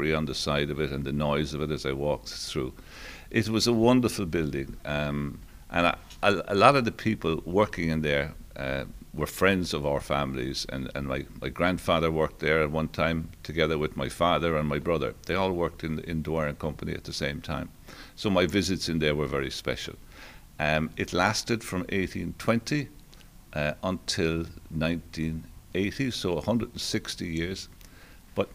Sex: male